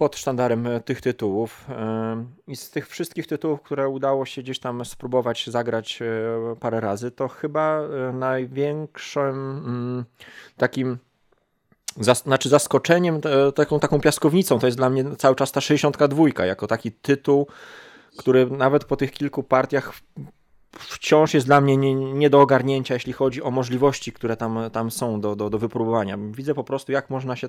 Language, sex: Polish, male